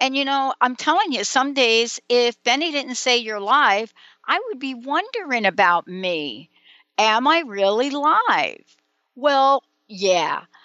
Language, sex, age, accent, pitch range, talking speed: English, female, 60-79, American, 195-270 Hz, 145 wpm